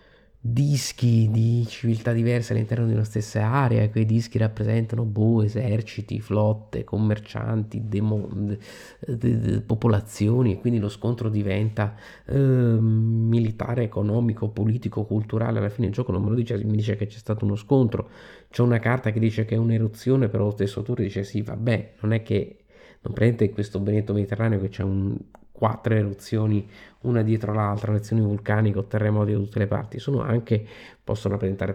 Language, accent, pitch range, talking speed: Italian, native, 105-115 Hz, 170 wpm